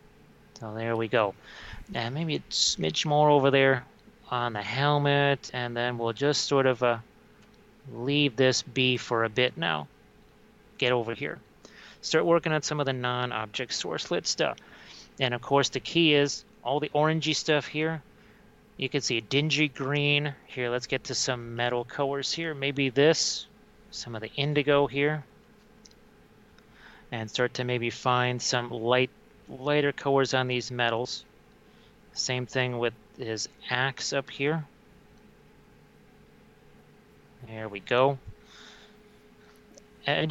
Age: 30-49